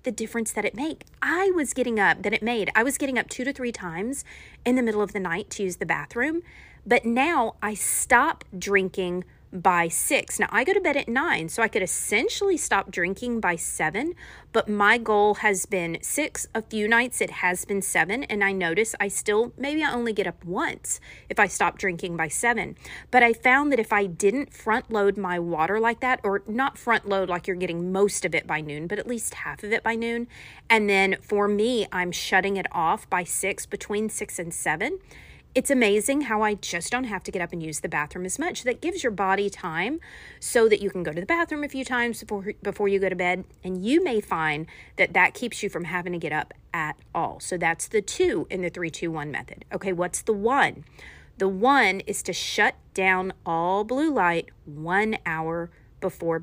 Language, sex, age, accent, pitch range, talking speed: English, female, 30-49, American, 185-240 Hz, 220 wpm